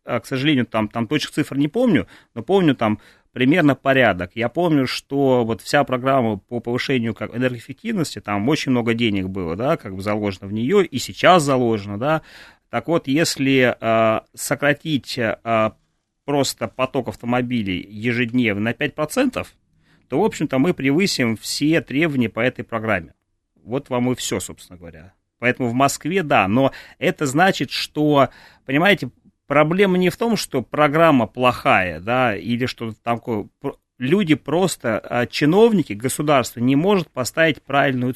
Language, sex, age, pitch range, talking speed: Russian, male, 30-49, 115-155 Hz, 145 wpm